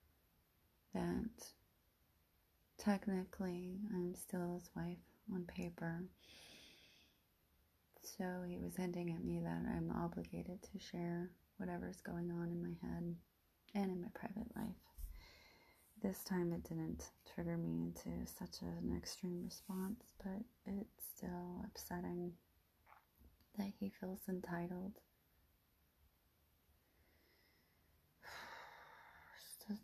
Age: 30-49